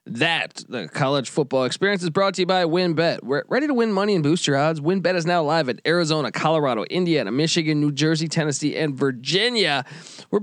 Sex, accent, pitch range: male, American, 145-180 Hz